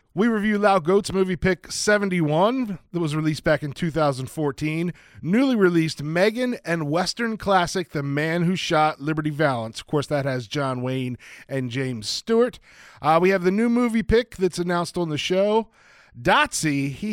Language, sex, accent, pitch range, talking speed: English, male, American, 140-195 Hz, 170 wpm